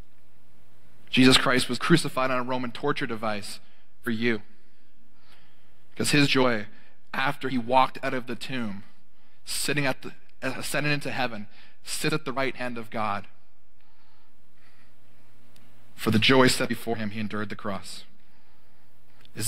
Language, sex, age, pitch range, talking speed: English, male, 30-49, 110-130 Hz, 140 wpm